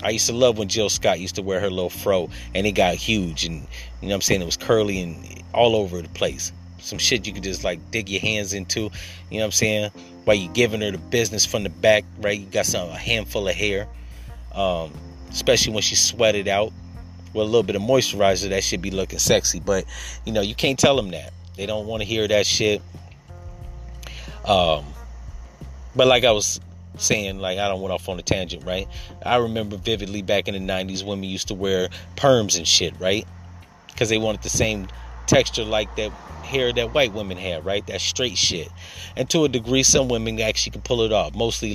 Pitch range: 85-110 Hz